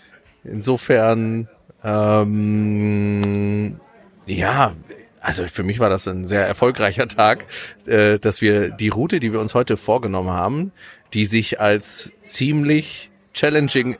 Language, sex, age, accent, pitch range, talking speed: German, male, 30-49, German, 105-130 Hz, 120 wpm